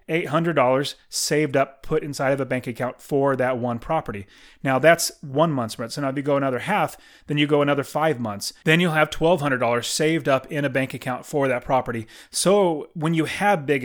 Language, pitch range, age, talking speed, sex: English, 130-160 Hz, 30-49, 210 wpm, male